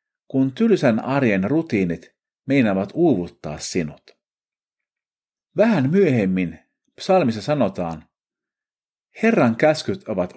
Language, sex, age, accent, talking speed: Finnish, male, 50-69, native, 80 wpm